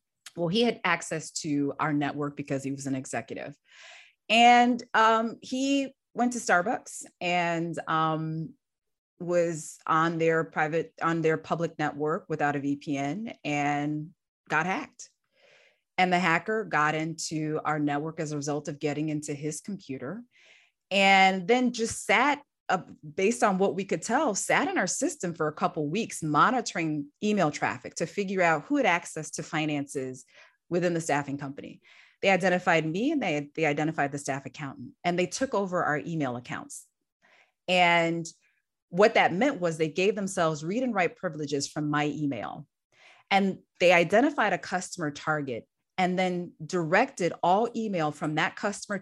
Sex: female